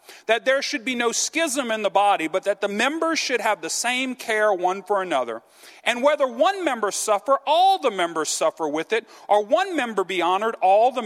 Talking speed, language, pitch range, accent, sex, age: 210 wpm, English, 205-290 Hz, American, male, 40-59